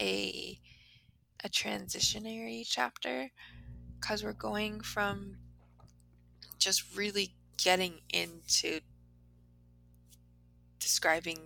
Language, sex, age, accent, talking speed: English, female, 20-39, American, 70 wpm